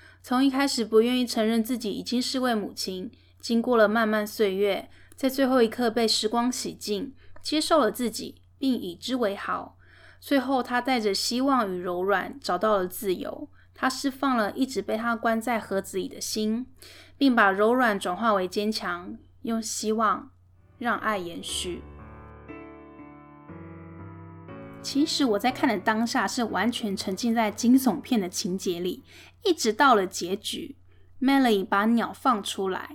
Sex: female